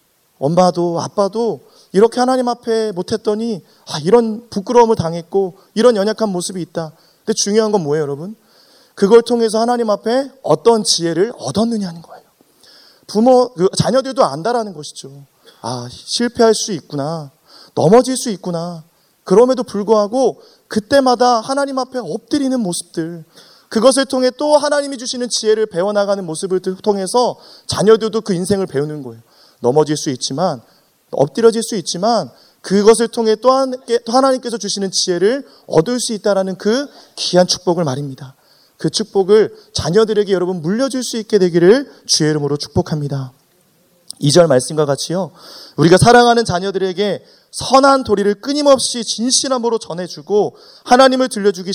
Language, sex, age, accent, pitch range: Korean, male, 30-49, native, 170-235 Hz